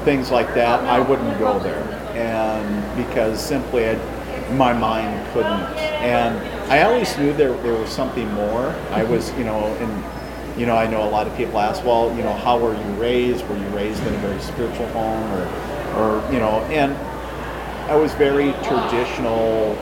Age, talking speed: 40-59, 180 wpm